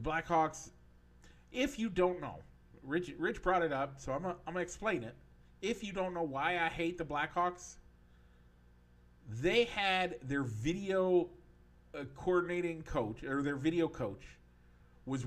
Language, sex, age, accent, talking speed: English, male, 50-69, American, 145 wpm